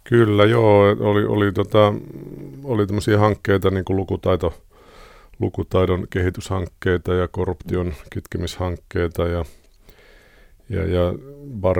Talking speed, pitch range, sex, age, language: 90 wpm, 85-95 Hz, male, 50-69, Finnish